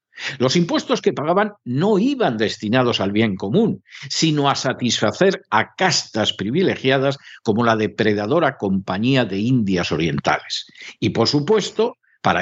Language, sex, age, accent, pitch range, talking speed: Spanish, male, 60-79, Spanish, 110-175 Hz, 130 wpm